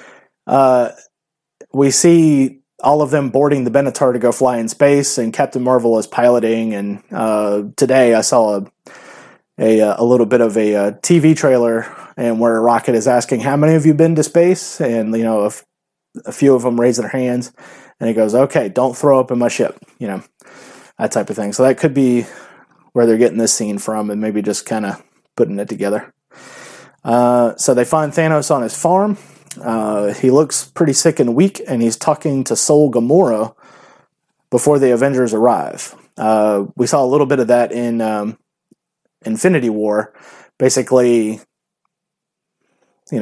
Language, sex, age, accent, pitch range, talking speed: English, male, 30-49, American, 110-135 Hz, 185 wpm